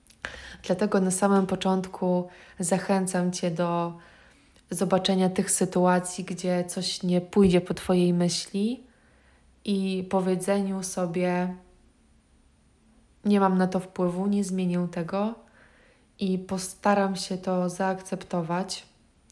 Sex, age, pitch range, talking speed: female, 20-39, 180-195 Hz, 105 wpm